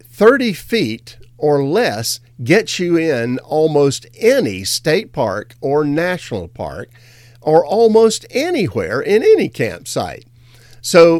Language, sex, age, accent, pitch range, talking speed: English, male, 50-69, American, 120-155 Hz, 115 wpm